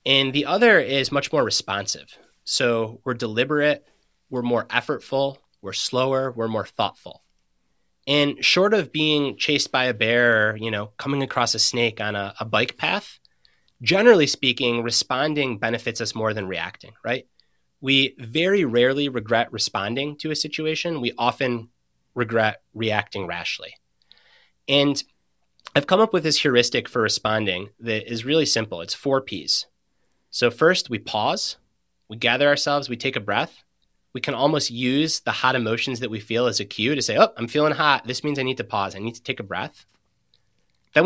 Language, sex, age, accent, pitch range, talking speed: English, male, 30-49, American, 110-145 Hz, 170 wpm